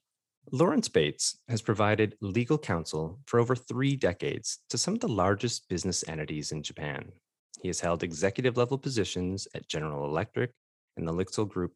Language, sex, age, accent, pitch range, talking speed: English, male, 30-49, American, 90-120 Hz, 160 wpm